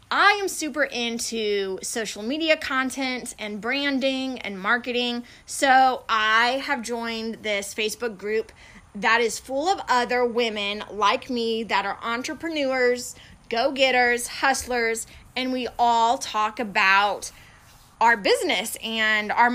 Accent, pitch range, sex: American, 220-275 Hz, female